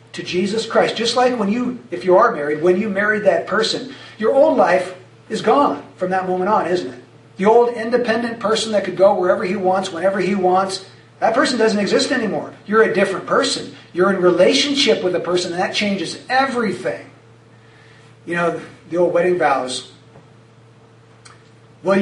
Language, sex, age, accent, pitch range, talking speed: English, male, 50-69, American, 125-200 Hz, 180 wpm